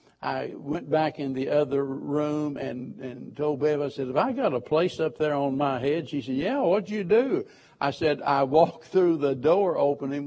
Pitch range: 140-165 Hz